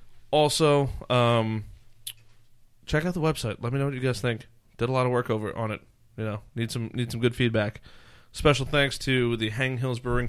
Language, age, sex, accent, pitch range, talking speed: English, 20-39, male, American, 110-125 Hz, 210 wpm